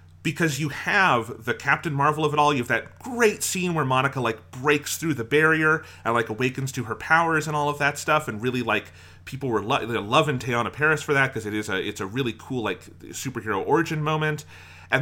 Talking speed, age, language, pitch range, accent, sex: 220 wpm, 30-49, English, 100-145 Hz, American, male